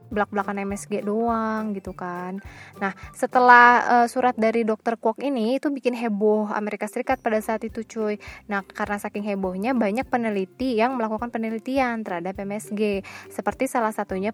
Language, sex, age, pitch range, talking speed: Indonesian, female, 20-39, 195-235 Hz, 150 wpm